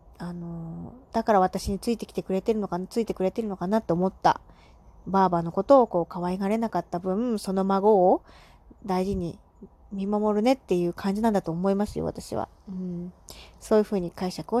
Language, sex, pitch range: Japanese, female, 175-220 Hz